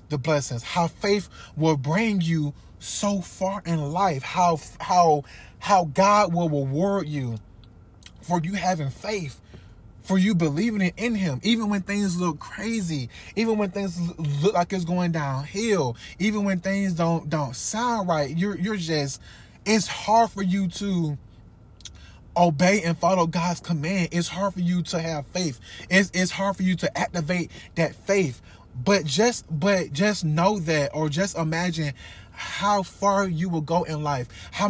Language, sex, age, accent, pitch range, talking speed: English, male, 20-39, American, 150-195 Hz, 160 wpm